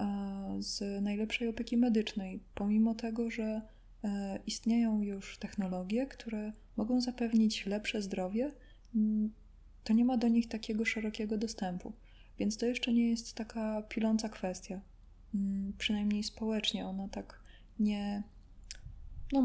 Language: Polish